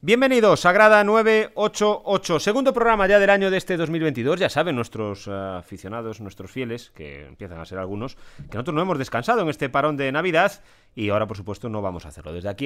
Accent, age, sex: Spanish, 30-49, male